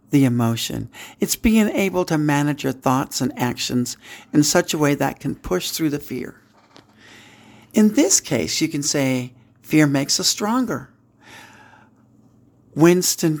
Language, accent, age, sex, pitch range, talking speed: English, American, 60-79, male, 115-155 Hz, 145 wpm